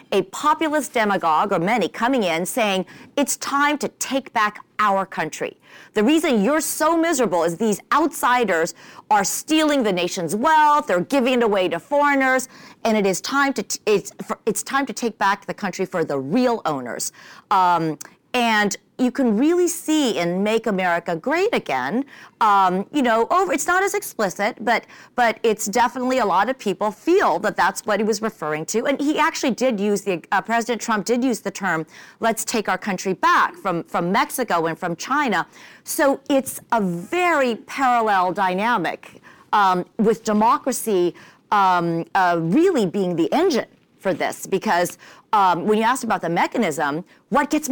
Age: 40-59